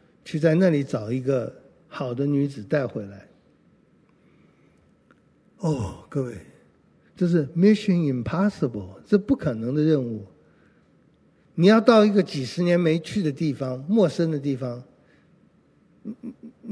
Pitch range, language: 145-205 Hz, Chinese